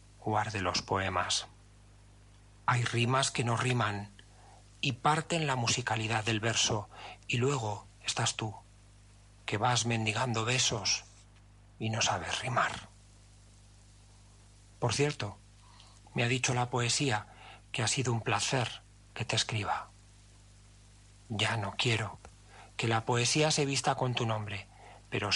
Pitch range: 100-120 Hz